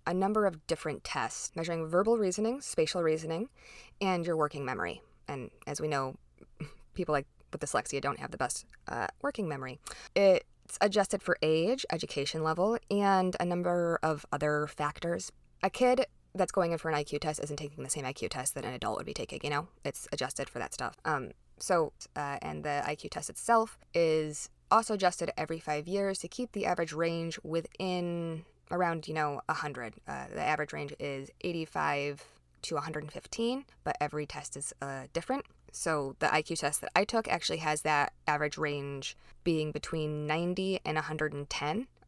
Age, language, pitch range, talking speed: 20-39, English, 150-200 Hz, 175 wpm